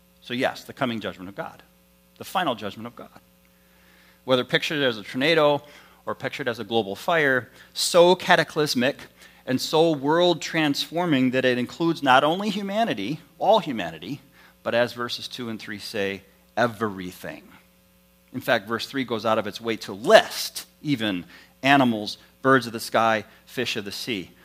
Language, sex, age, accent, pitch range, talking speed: English, male, 40-59, American, 95-145 Hz, 160 wpm